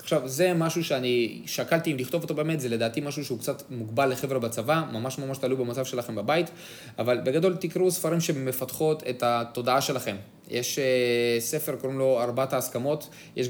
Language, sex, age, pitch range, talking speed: Hebrew, male, 20-39, 125-155 Hz, 170 wpm